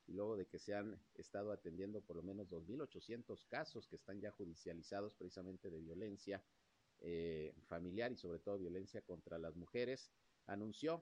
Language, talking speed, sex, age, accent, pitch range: Spanish, 165 wpm, male, 50-69, Mexican, 85-105 Hz